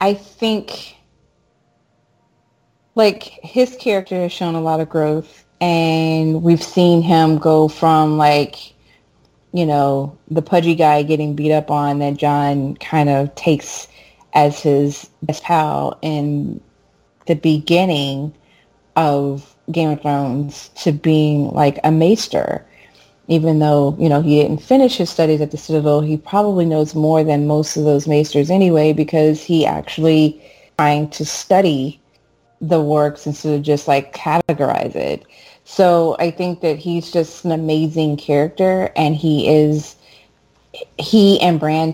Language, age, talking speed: English, 30-49, 140 wpm